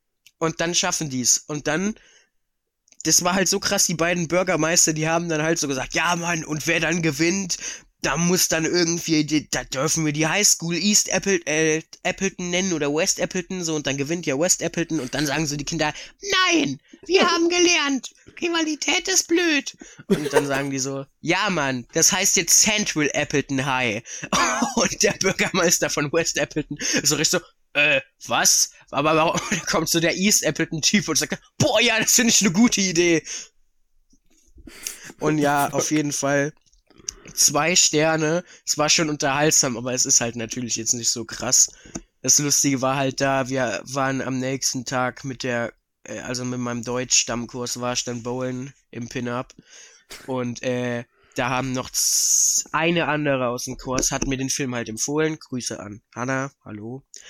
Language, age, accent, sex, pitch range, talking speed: German, 20-39, German, male, 130-175 Hz, 175 wpm